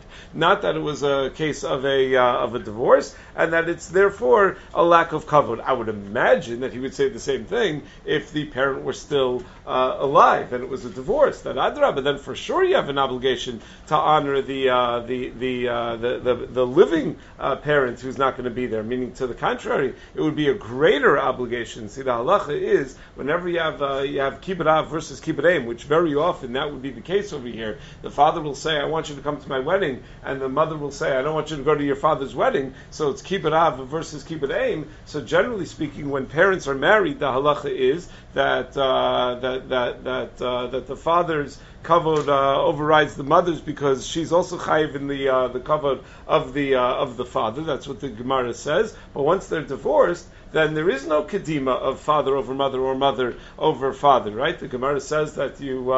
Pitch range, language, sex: 130-155 Hz, English, male